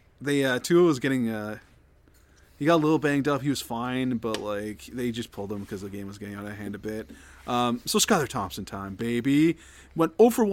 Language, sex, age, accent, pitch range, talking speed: English, male, 30-49, American, 110-150 Hz, 230 wpm